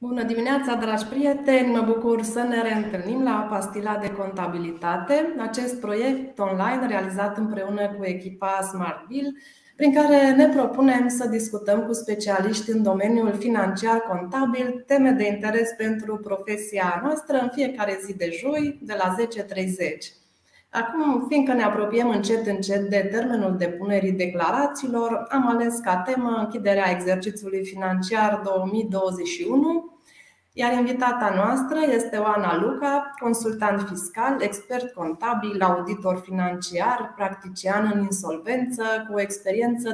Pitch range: 195-245 Hz